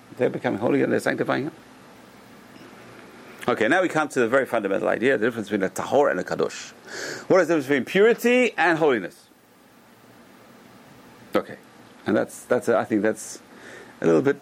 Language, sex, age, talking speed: English, male, 40-59, 180 wpm